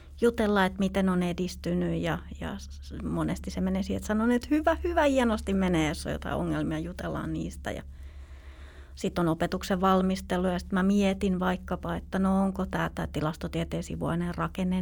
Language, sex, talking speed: Finnish, female, 160 wpm